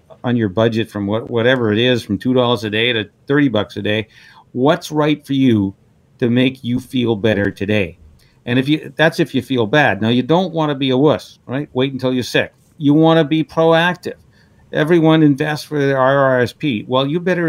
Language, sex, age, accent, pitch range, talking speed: English, male, 50-69, American, 115-140 Hz, 200 wpm